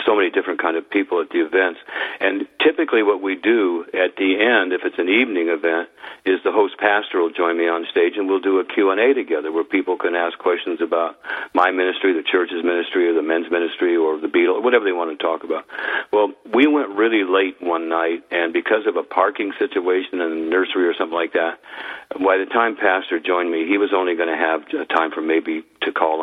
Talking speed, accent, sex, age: 230 wpm, American, male, 50-69